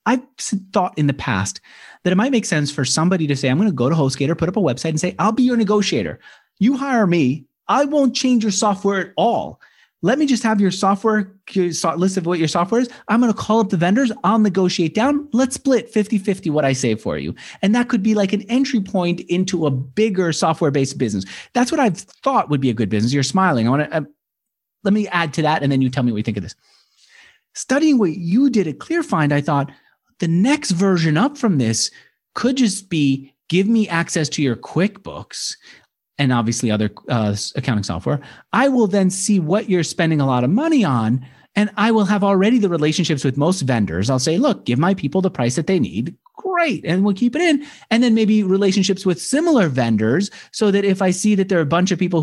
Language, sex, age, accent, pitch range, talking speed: English, male, 30-49, American, 145-220 Hz, 230 wpm